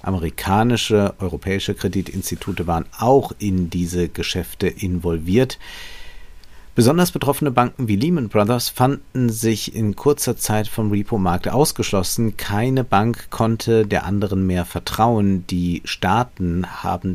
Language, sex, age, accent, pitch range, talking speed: German, male, 50-69, German, 95-120 Hz, 115 wpm